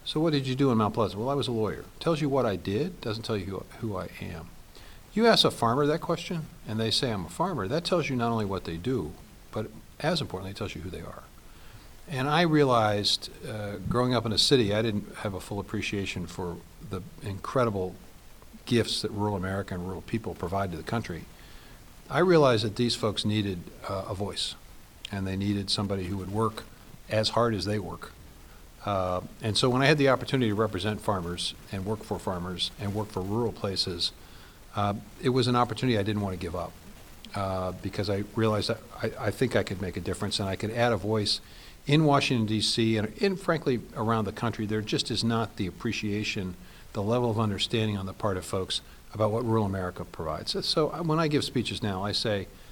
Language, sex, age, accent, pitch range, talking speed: English, male, 50-69, American, 95-120 Hz, 220 wpm